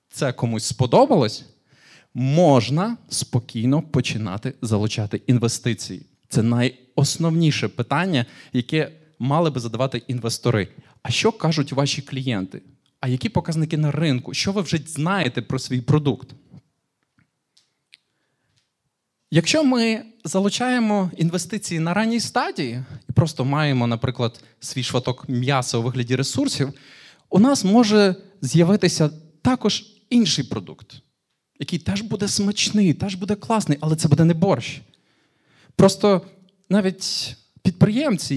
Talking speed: 110 wpm